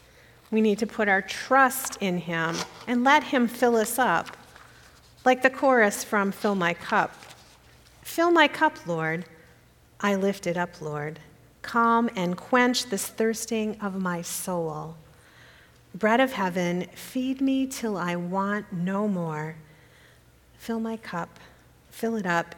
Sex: female